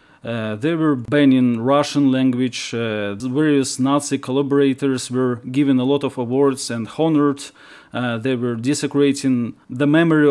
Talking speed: 140 wpm